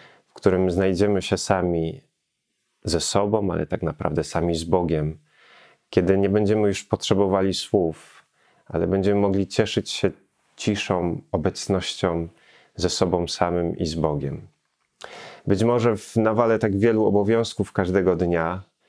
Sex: male